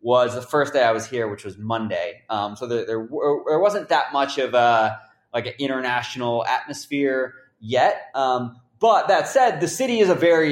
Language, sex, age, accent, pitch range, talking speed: English, male, 20-39, American, 125-185 Hz, 200 wpm